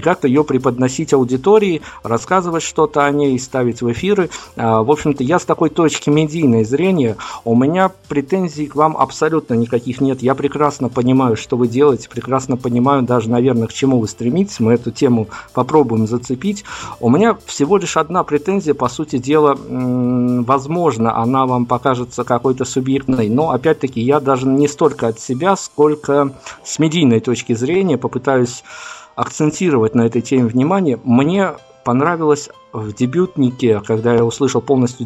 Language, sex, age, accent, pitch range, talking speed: Russian, male, 50-69, native, 125-150 Hz, 155 wpm